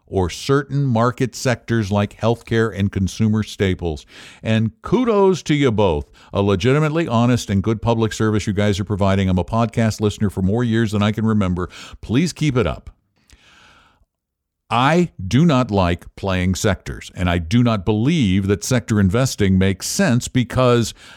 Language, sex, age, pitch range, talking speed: English, male, 60-79, 90-125 Hz, 160 wpm